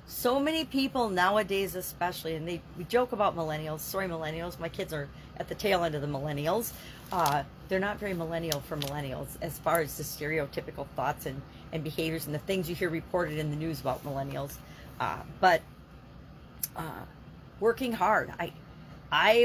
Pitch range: 165-210 Hz